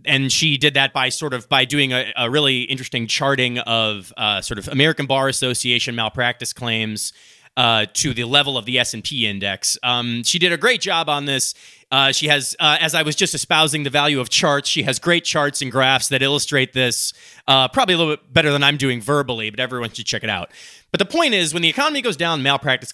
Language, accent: English, American